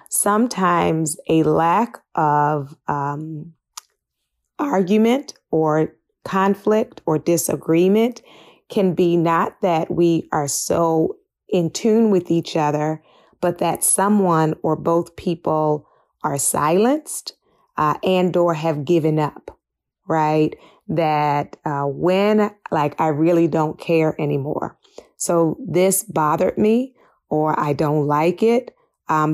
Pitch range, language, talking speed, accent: 155-185 Hz, English, 115 wpm, American